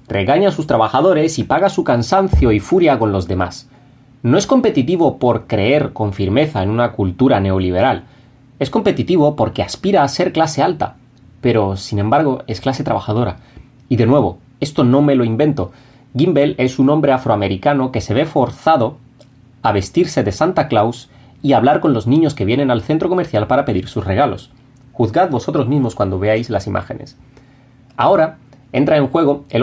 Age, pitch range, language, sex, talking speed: 30-49, 110-145 Hz, Spanish, male, 175 wpm